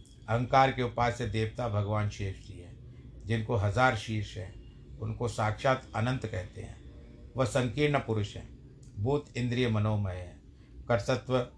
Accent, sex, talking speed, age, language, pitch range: native, male, 140 wpm, 50-69, Hindi, 105-130 Hz